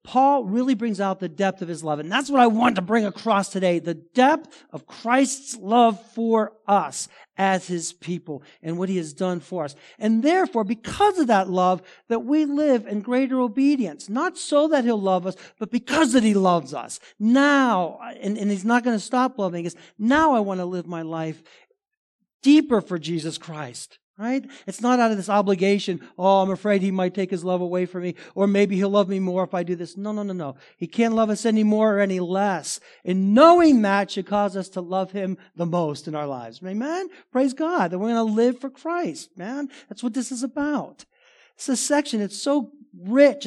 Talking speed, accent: 215 wpm, American